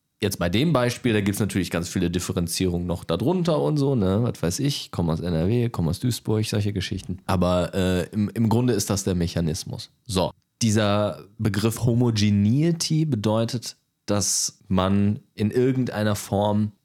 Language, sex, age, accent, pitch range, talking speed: German, male, 30-49, German, 95-120 Hz, 165 wpm